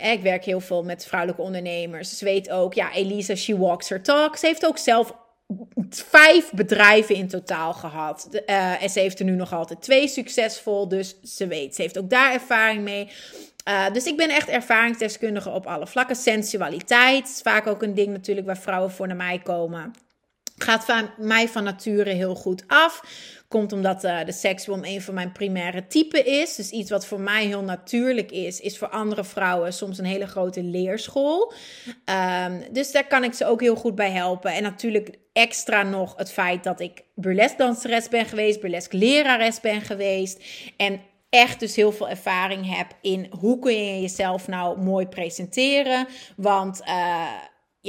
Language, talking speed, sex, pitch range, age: Dutch, 185 wpm, female, 185-230 Hz, 30-49